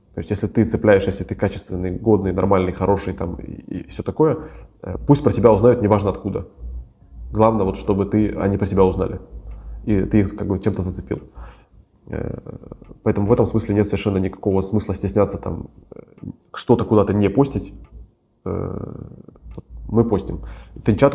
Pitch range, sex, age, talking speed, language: 95-110 Hz, male, 20-39, 155 wpm, Russian